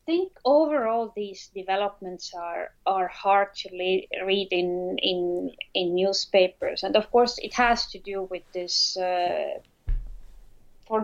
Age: 30-49